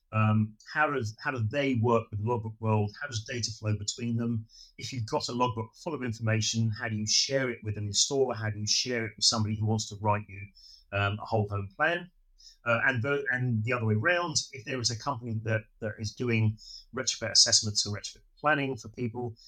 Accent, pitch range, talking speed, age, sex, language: British, 110-125 Hz, 220 wpm, 30-49, male, English